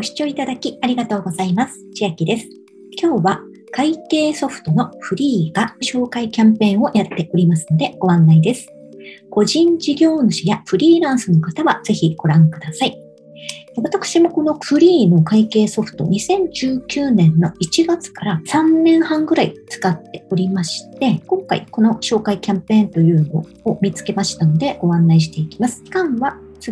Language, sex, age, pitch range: Japanese, male, 40-59, 180-270 Hz